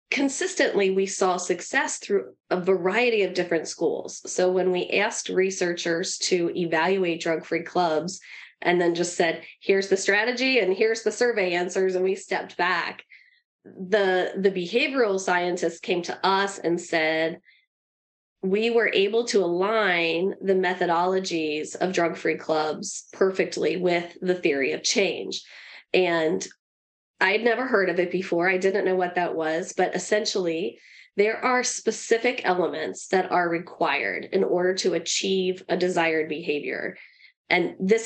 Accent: American